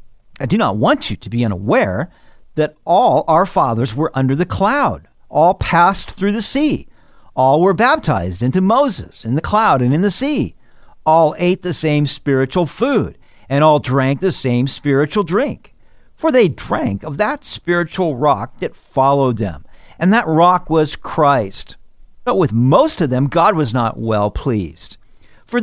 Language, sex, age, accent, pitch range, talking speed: English, male, 50-69, American, 125-180 Hz, 170 wpm